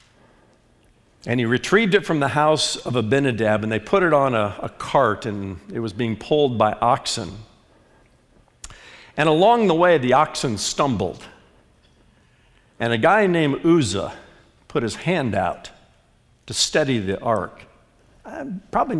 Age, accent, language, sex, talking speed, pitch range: 50-69, American, English, male, 140 wpm, 120-200 Hz